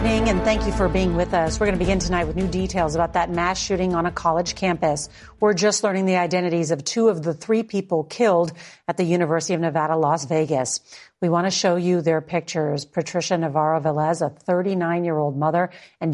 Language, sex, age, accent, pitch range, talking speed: English, female, 40-59, American, 165-190 Hz, 210 wpm